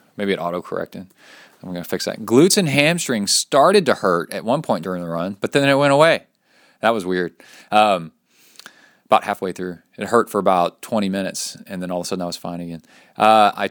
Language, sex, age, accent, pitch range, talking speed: English, male, 30-49, American, 90-110 Hz, 220 wpm